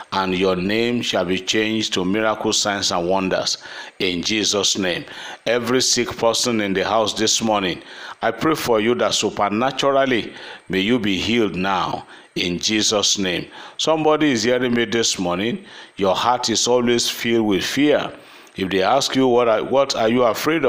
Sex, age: male, 50-69